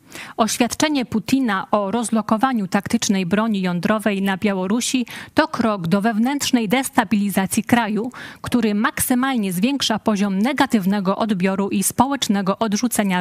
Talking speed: 110 wpm